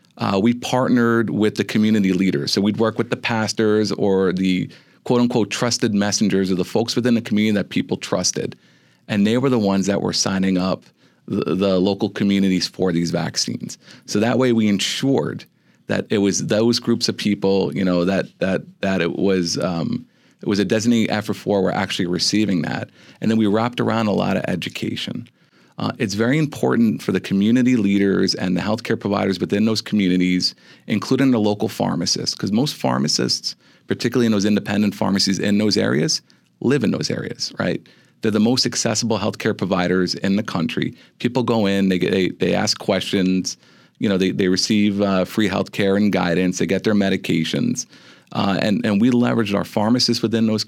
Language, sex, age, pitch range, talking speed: English, male, 40-59, 95-115 Hz, 190 wpm